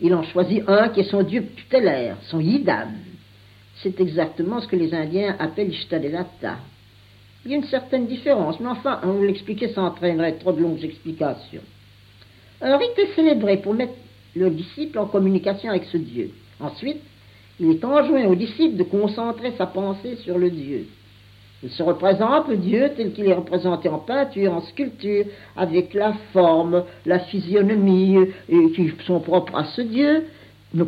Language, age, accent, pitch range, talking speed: French, 60-79, French, 165-235 Hz, 175 wpm